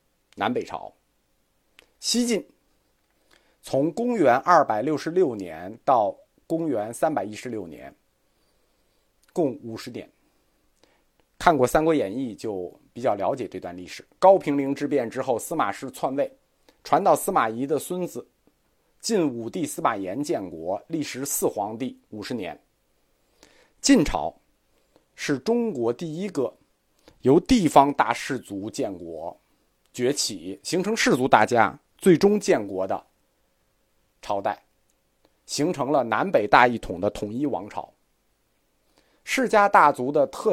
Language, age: Chinese, 50-69